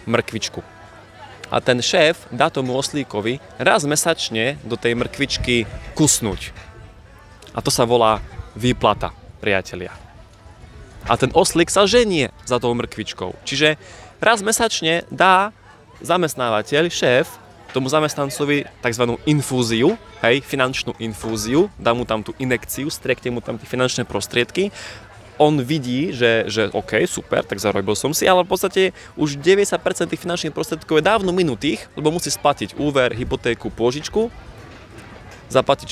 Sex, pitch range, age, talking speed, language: male, 110-150 Hz, 20-39, 130 wpm, Slovak